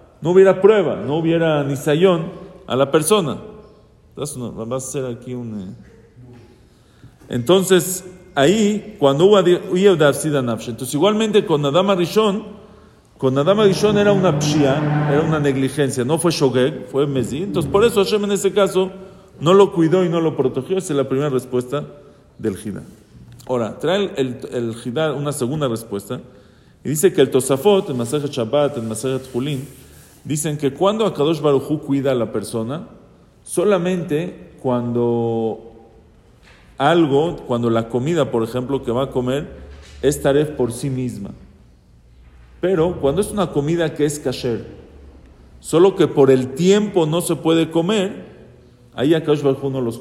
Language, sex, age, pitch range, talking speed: English, male, 50-69, 120-170 Hz, 155 wpm